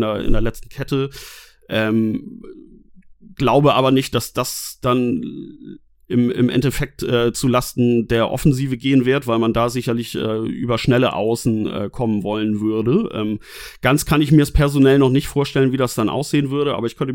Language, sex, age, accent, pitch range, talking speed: German, male, 30-49, German, 115-135 Hz, 180 wpm